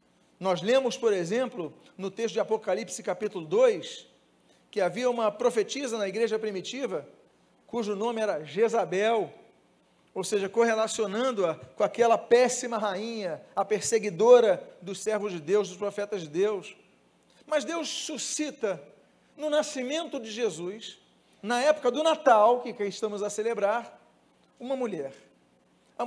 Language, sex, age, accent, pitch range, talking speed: Portuguese, male, 40-59, Brazilian, 195-245 Hz, 130 wpm